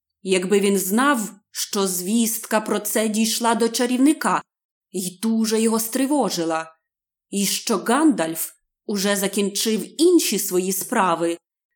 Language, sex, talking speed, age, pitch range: Ukrainian, female, 110 wpm, 30-49, 185-260 Hz